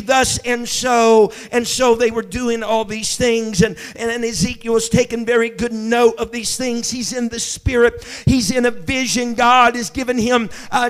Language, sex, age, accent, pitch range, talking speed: English, male, 50-69, American, 225-255 Hz, 195 wpm